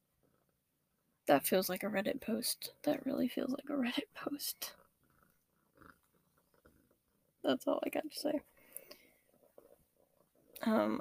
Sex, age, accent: female, 10-29, American